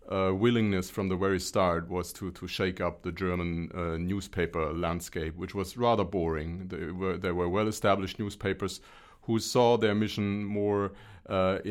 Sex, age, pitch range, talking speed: male, 40-59, 90-105 Hz, 165 wpm